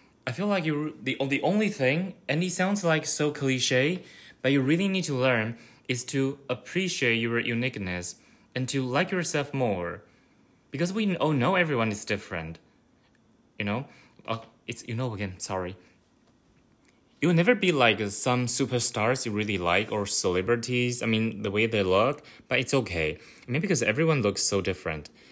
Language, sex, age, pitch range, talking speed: English, male, 20-39, 105-140 Hz, 175 wpm